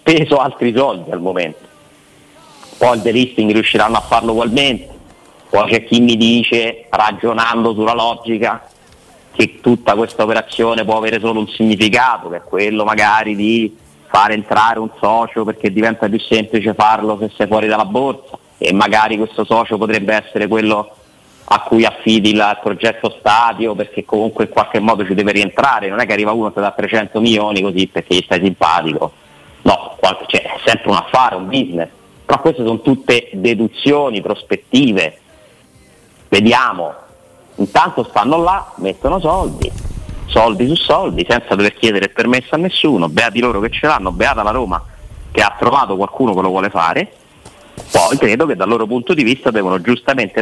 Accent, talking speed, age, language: native, 170 wpm, 30-49, Italian